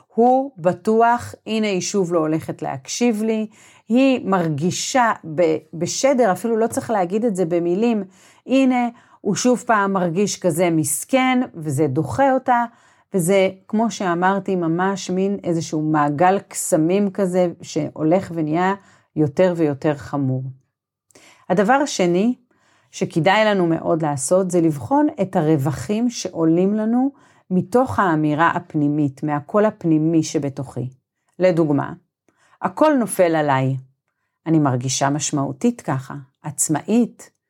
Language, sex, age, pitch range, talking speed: Hebrew, female, 40-59, 155-210 Hz, 110 wpm